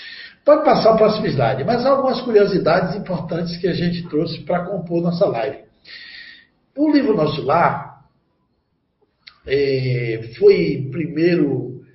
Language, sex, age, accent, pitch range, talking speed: Portuguese, male, 60-79, Brazilian, 130-195 Hz, 115 wpm